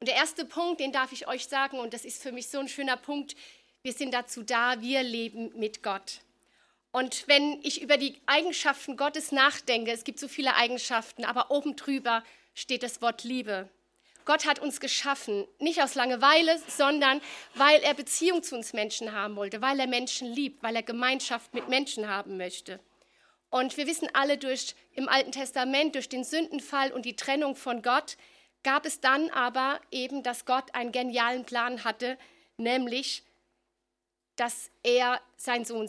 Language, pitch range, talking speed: German, 240-285 Hz, 175 wpm